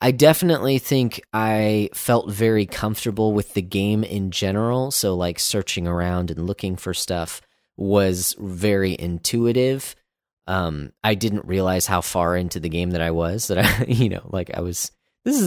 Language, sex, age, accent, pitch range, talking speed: English, male, 30-49, American, 85-110 Hz, 170 wpm